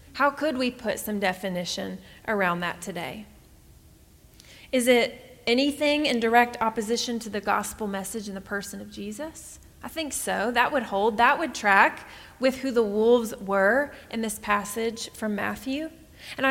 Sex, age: female, 30-49